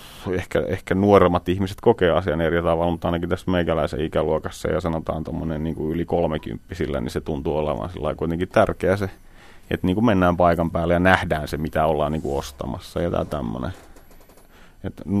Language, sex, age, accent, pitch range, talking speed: Finnish, male, 30-49, native, 80-95 Hz, 175 wpm